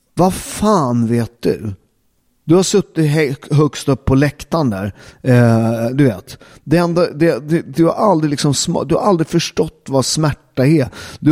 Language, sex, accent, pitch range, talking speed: Swedish, male, native, 110-135 Hz, 105 wpm